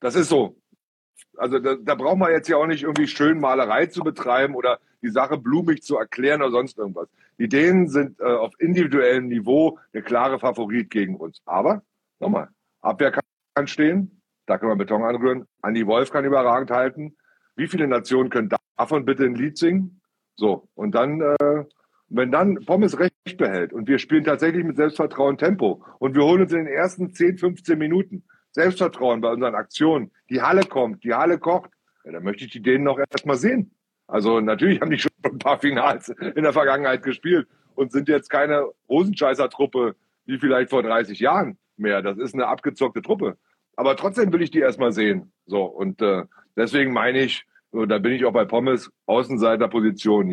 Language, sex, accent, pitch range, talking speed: German, male, German, 120-160 Hz, 185 wpm